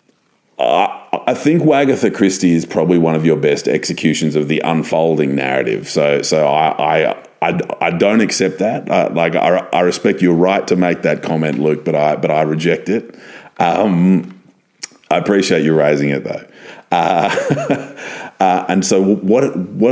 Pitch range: 75-95 Hz